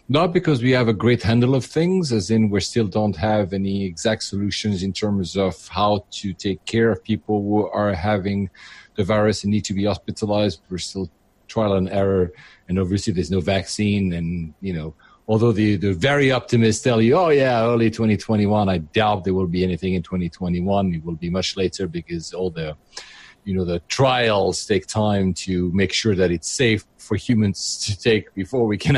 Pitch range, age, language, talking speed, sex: 95-115 Hz, 40-59, English, 200 wpm, male